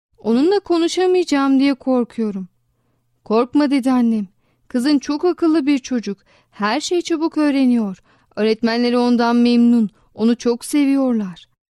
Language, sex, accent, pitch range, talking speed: Turkish, female, native, 220-280 Hz, 115 wpm